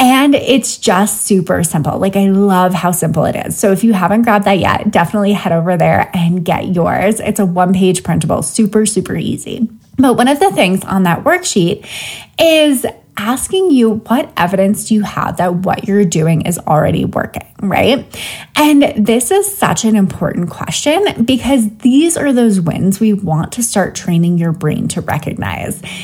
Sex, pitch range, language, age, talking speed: female, 185-250 Hz, English, 20-39, 180 wpm